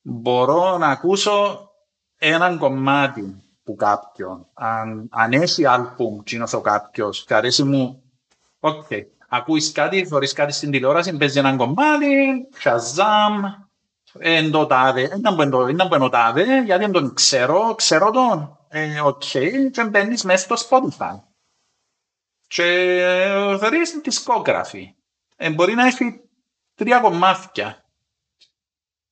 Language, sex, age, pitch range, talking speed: Greek, male, 50-69, 135-200 Hz, 120 wpm